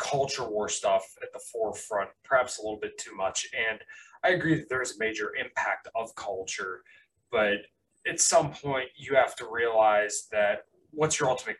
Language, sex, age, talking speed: English, male, 20-39, 180 wpm